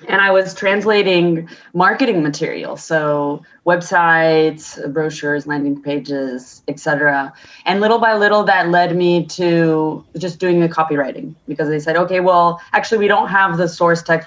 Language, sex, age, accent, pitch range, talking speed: English, female, 20-39, American, 155-190 Hz, 150 wpm